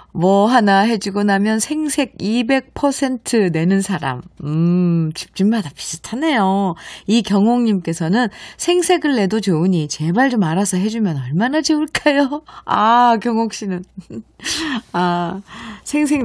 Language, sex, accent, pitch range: Korean, female, native, 175-250 Hz